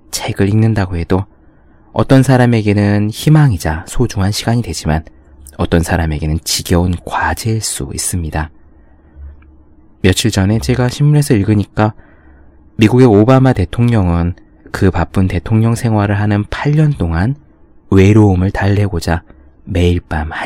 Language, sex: Korean, male